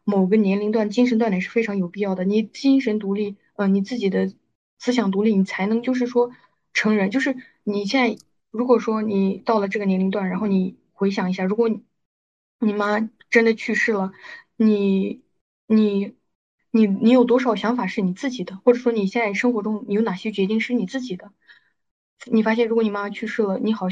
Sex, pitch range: female, 195-230 Hz